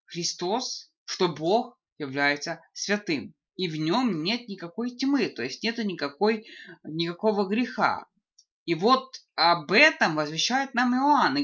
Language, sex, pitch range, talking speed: Russian, female, 180-255 Hz, 125 wpm